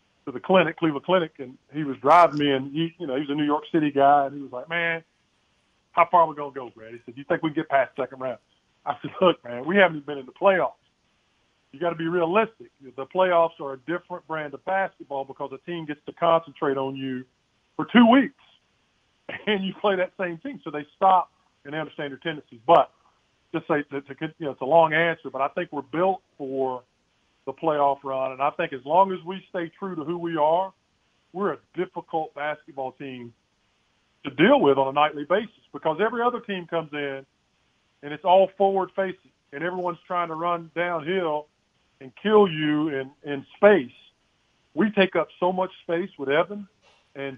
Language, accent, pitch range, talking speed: English, American, 140-180 Hz, 215 wpm